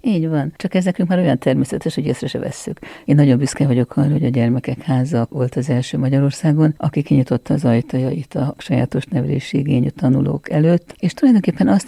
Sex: female